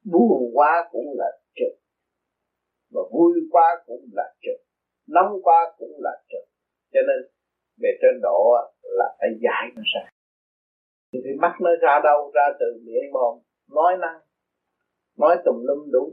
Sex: male